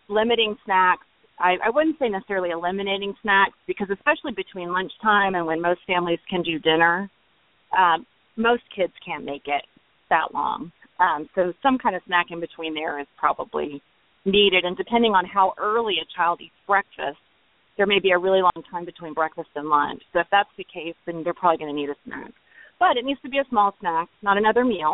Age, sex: 30-49, female